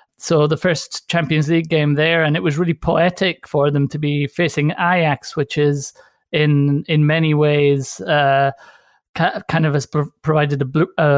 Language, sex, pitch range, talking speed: English, male, 140-160 Hz, 160 wpm